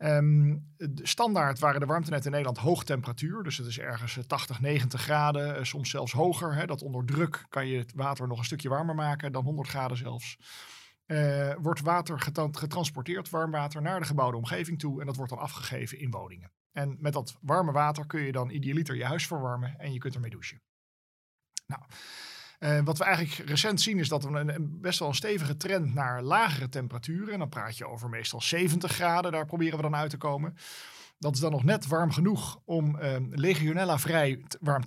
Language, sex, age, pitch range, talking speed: Dutch, male, 40-59, 130-165 Hz, 200 wpm